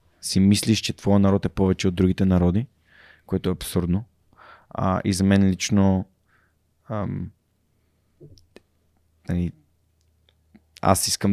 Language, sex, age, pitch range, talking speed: Bulgarian, male, 20-39, 90-105 Hz, 115 wpm